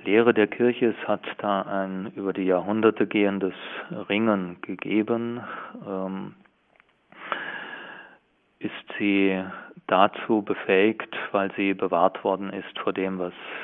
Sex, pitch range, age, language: male, 95-105 Hz, 30-49, German